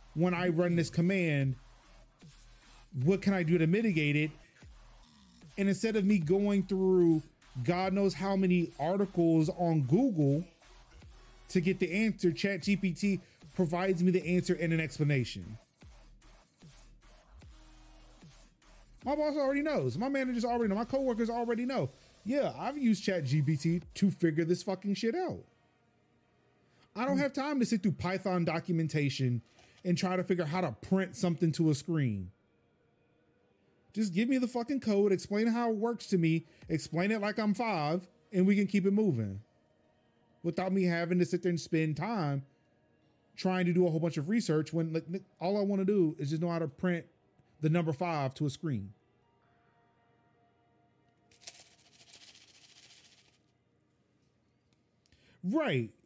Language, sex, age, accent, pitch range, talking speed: English, male, 30-49, American, 145-195 Hz, 150 wpm